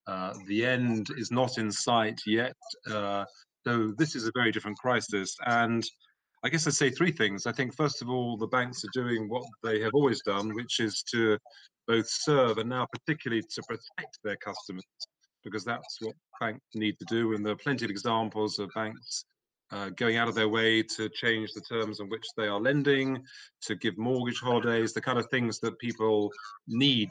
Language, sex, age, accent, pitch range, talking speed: English, male, 40-59, British, 110-125 Hz, 200 wpm